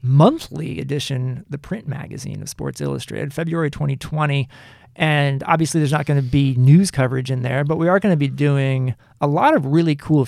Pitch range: 130-155 Hz